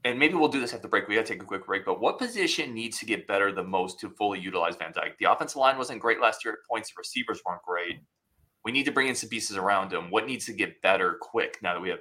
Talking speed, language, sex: 300 wpm, English, male